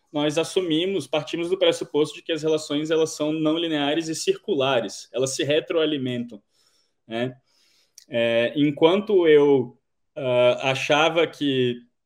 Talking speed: 125 wpm